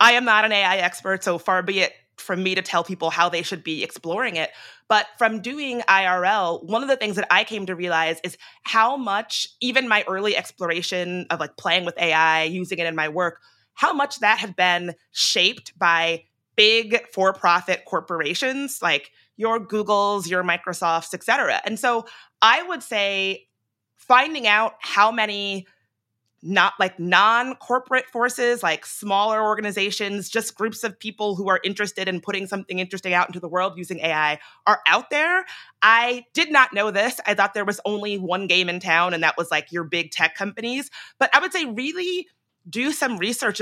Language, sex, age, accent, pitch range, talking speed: English, female, 30-49, American, 175-225 Hz, 185 wpm